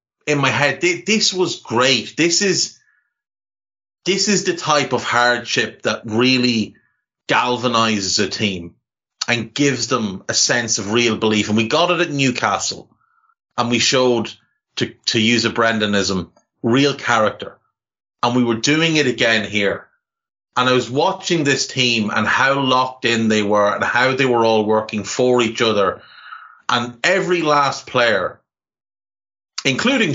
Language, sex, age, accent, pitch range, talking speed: English, male, 30-49, Irish, 110-145 Hz, 150 wpm